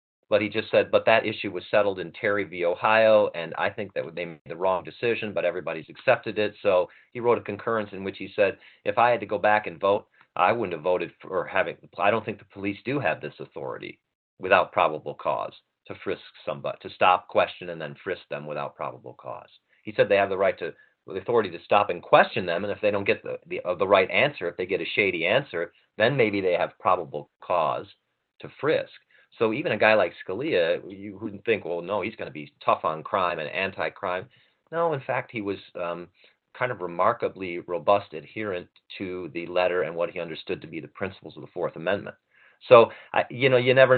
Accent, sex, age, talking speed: American, male, 40-59, 225 wpm